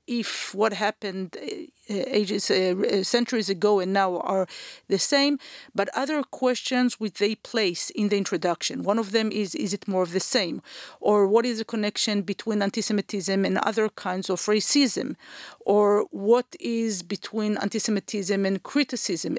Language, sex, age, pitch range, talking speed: English, female, 40-59, 195-240 Hz, 155 wpm